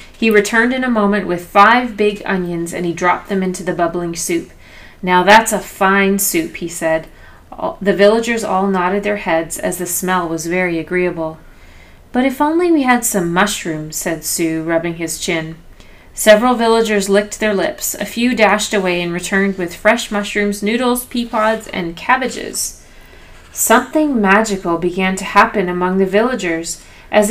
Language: English